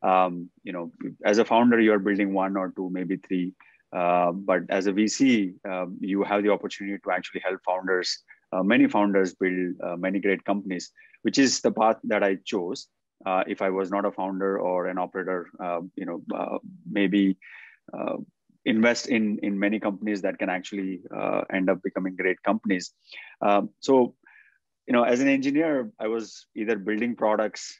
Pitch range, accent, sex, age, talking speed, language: 95-105 Hz, Indian, male, 30-49, 185 wpm, English